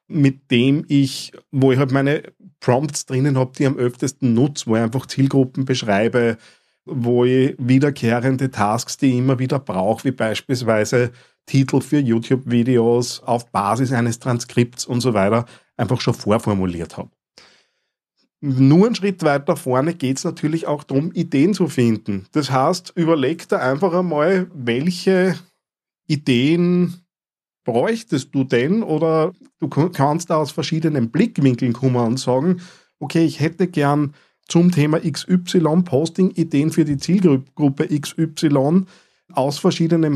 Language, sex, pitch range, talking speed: German, male, 125-165 Hz, 140 wpm